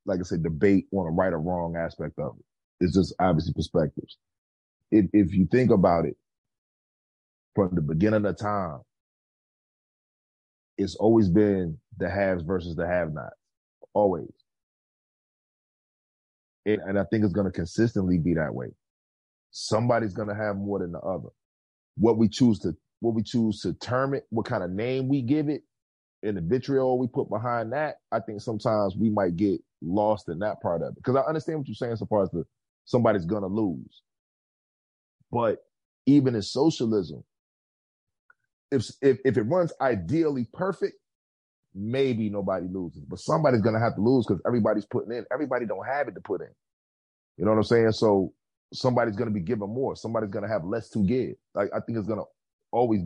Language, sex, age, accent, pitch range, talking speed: English, male, 30-49, American, 95-120 Hz, 180 wpm